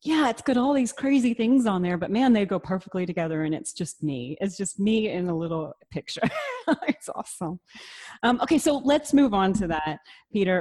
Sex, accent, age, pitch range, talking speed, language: female, American, 30-49, 165-210 Hz, 210 wpm, English